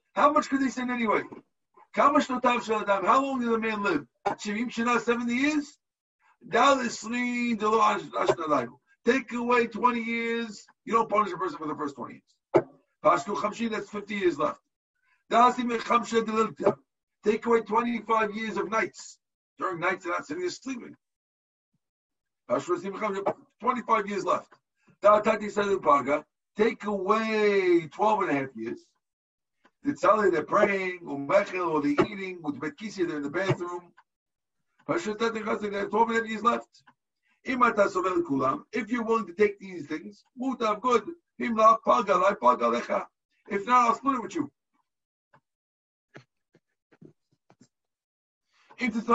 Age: 50-69